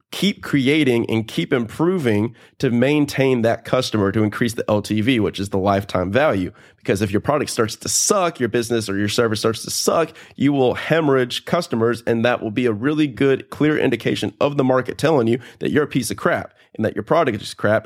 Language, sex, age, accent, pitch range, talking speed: English, male, 30-49, American, 110-130 Hz, 210 wpm